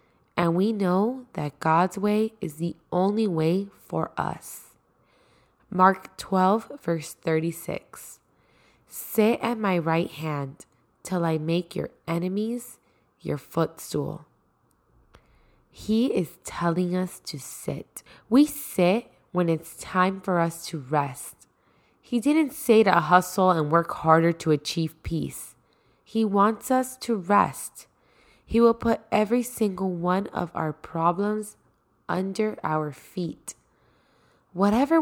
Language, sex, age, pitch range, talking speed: English, female, 20-39, 165-210 Hz, 125 wpm